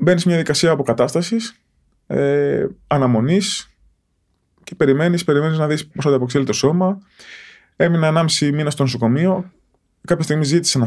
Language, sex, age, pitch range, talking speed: Greek, male, 20-39, 120-170 Hz, 145 wpm